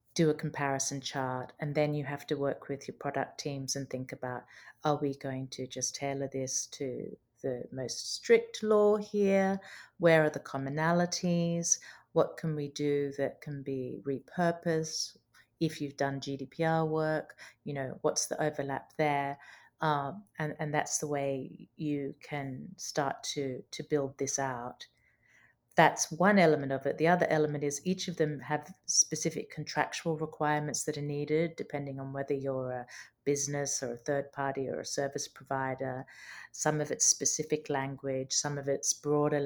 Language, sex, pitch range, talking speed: English, female, 135-155 Hz, 165 wpm